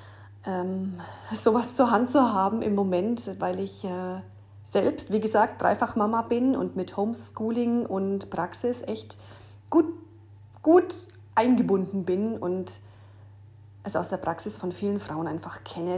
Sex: female